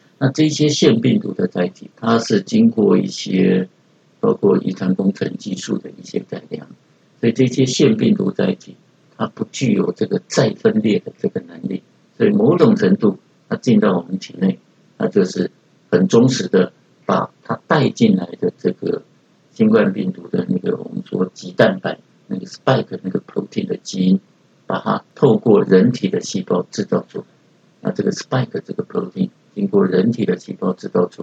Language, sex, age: Chinese, male, 60-79